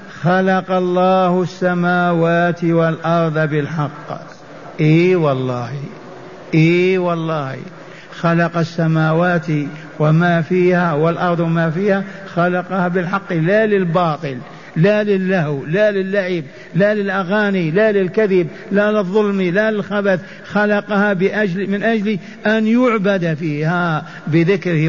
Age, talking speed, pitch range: 50-69, 95 wpm, 170-200 Hz